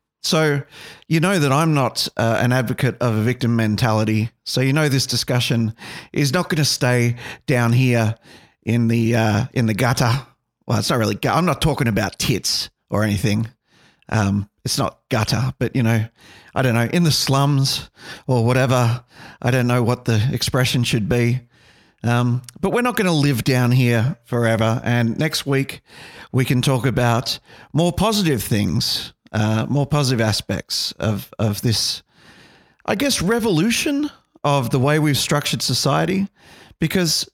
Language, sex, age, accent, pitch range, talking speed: English, male, 40-59, Australian, 115-145 Hz, 165 wpm